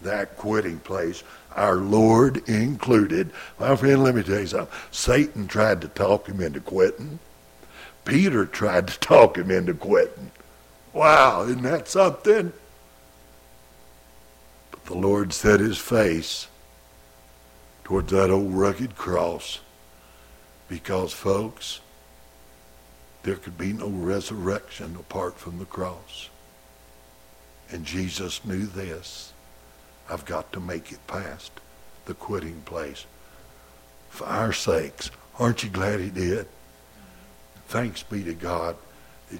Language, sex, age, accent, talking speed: English, male, 60-79, American, 120 wpm